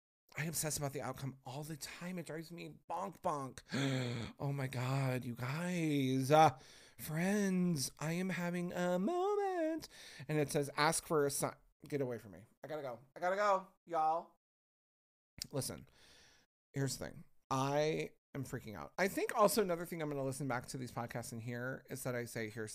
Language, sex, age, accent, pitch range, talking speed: English, male, 30-49, American, 130-175 Hz, 185 wpm